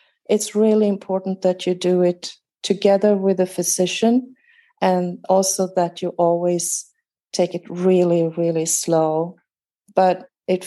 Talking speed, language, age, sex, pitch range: 130 wpm, English, 40-59, female, 170-205 Hz